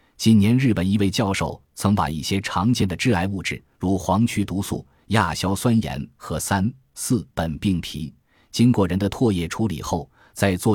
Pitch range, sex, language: 85-115 Hz, male, Chinese